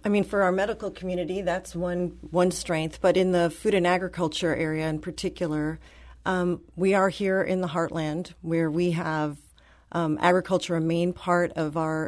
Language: English